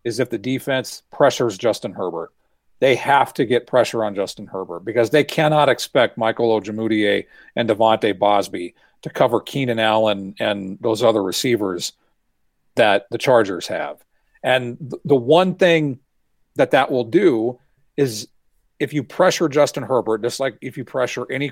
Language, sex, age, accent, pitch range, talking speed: English, male, 40-59, American, 115-145 Hz, 155 wpm